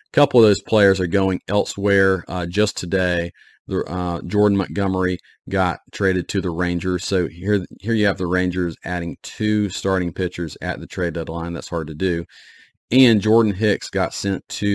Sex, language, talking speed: male, English, 180 wpm